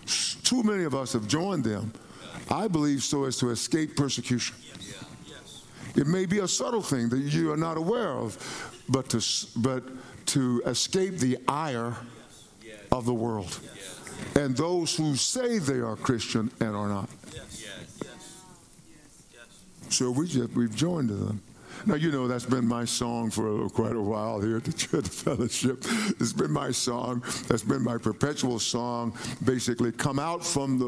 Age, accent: 60-79, American